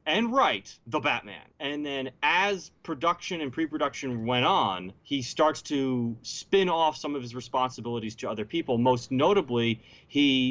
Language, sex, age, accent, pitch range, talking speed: English, male, 30-49, American, 110-135 Hz, 155 wpm